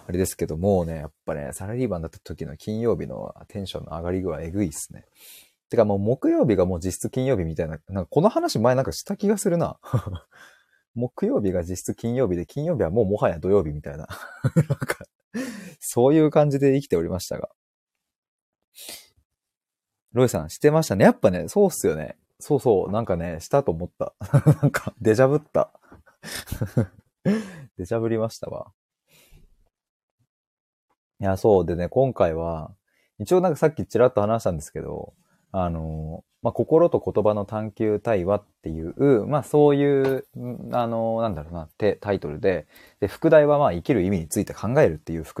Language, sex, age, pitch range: Japanese, male, 20-39, 90-135 Hz